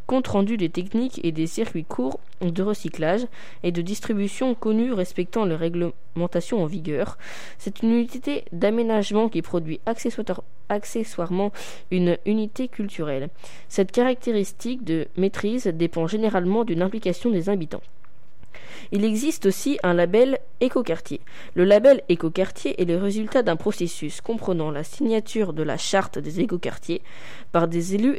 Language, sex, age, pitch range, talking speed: French, female, 20-39, 175-225 Hz, 135 wpm